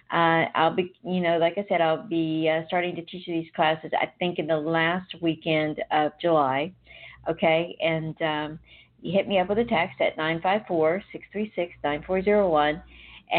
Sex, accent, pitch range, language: female, American, 155-180 Hz, English